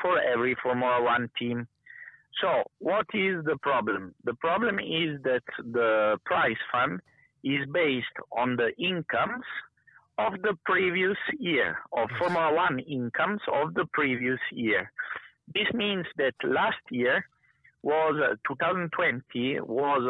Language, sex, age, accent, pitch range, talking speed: Dutch, male, 50-69, Italian, 120-155 Hz, 130 wpm